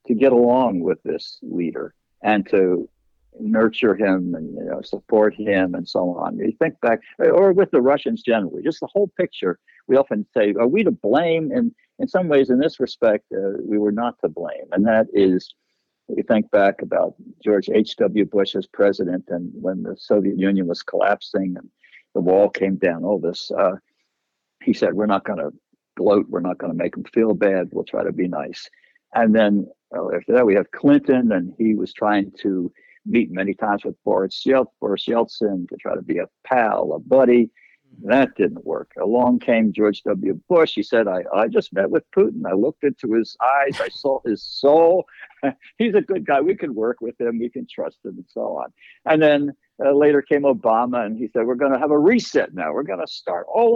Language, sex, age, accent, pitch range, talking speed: English, male, 60-79, American, 100-160 Hz, 205 wpm